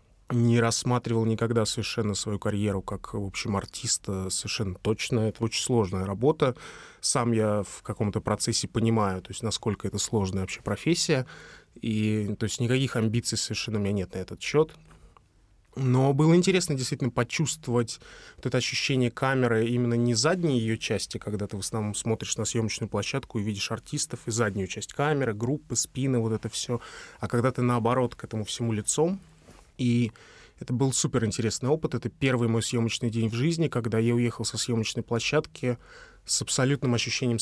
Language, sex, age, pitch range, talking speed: Russian, male, 20-39, 110-130 Hz, 165 wpm